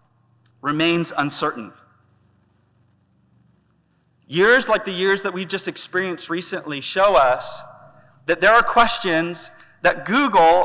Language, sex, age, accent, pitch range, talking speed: English, male, 30-49, American, 135-180 Hz, 105 wpm